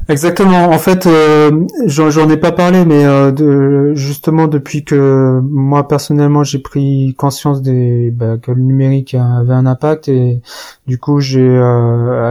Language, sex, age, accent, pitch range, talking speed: French, male, 30-49, French, 130-145 Hz, 160 wpm